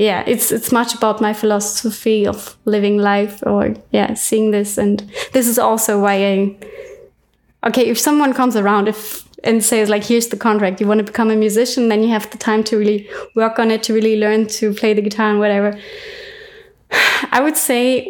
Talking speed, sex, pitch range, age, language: 195 wpm, female, 205-235 Hz, 20-39, English